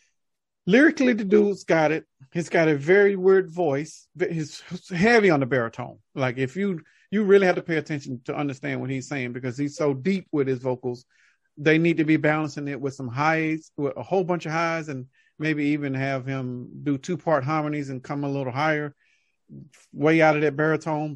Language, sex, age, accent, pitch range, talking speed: English, male, 40-59, American, 130-165 Hz, 200 wpm